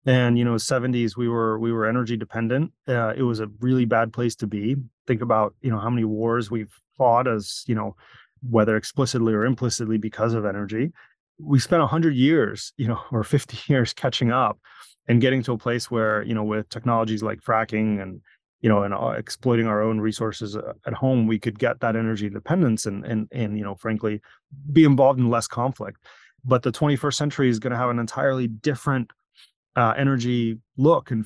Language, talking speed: English, 200 wpm